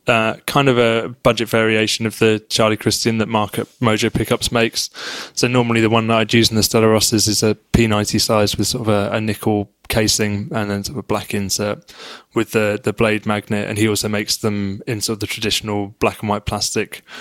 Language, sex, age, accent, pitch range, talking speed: English, male, 20-39, British, 105-115 Hz, 220 wpm